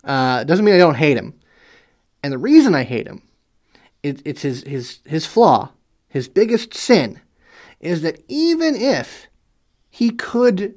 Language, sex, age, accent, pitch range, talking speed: English, male, 30-49, American, 145-225 Hz, 160 wpm